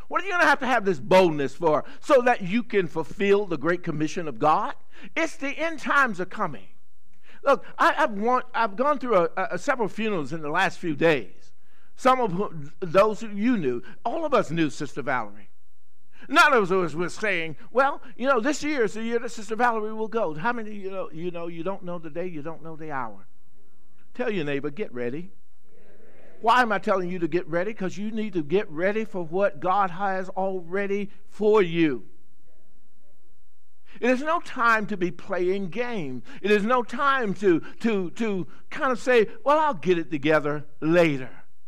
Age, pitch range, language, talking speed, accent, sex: 50-69, 140-225 Hz, English, 205 wpm, American, male